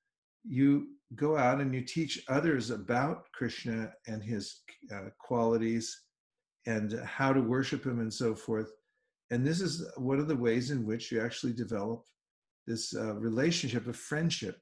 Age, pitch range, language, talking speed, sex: 50-69, 120-150 Hz, English, 155 wpm, male